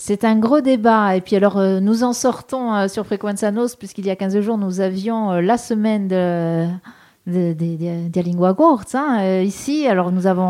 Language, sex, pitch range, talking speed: French, female, 180-235 Hz, 210 wpm